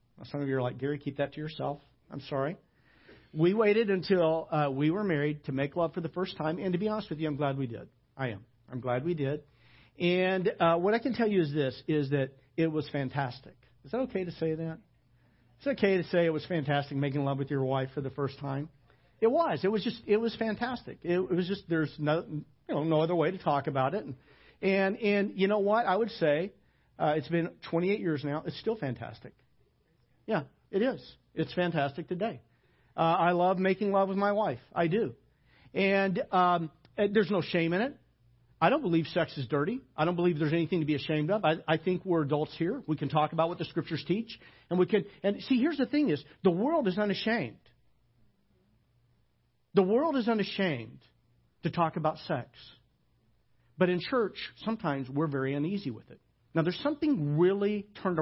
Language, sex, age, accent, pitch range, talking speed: English, male, 50-69, American, 140-195 Hz, 210 wpm